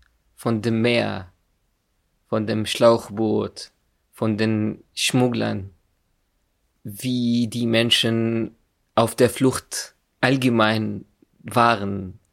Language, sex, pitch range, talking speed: German, male, 105-125 Hz, 85 wpm